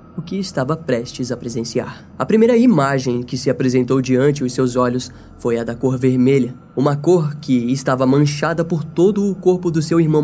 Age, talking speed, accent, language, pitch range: 10-29, 195 wpm, Brazilian, Portuguese, 130-165 Hz